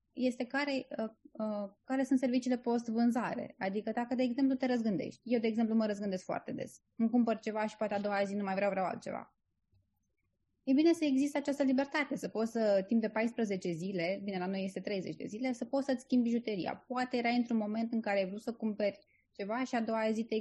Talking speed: 225 wpm